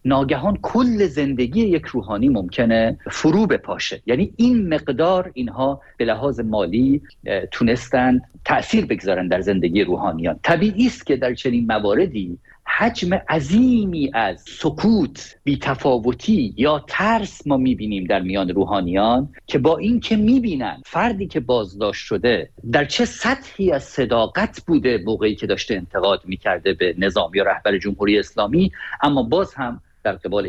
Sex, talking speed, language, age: male, 135 wpm, Persian, 50-69